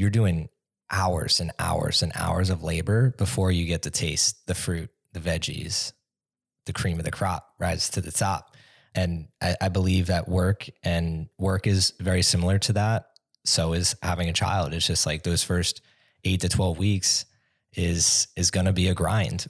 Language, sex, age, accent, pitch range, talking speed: English, male, 20-39, American, 90-105 Hz, 190 wpm